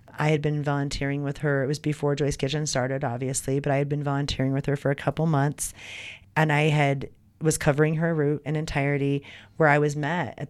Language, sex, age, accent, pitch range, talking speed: English, female, 30-49, American, 125-150 Hz, 215 wpm